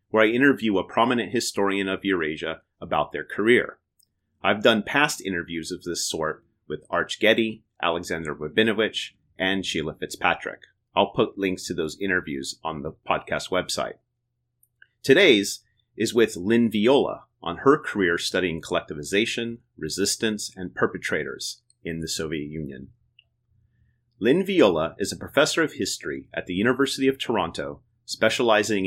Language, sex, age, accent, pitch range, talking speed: English, male, 30-49, American, 95-120 Hz, 135 wpm